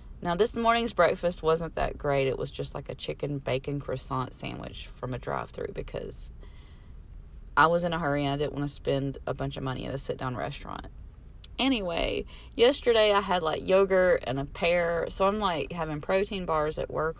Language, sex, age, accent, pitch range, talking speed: English, female, 30-49, American, 130-180 Hz, 195 wpm